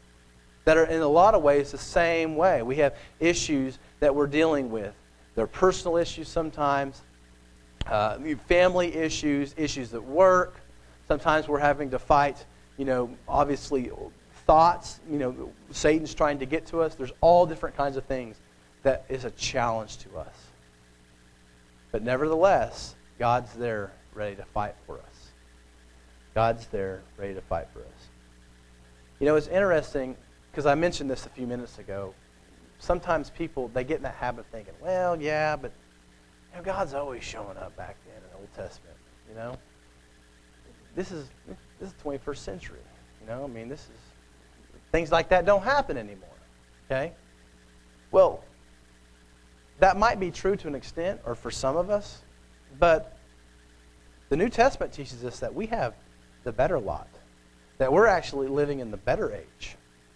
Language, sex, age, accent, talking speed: English, male, 40-59, American, 165 wpm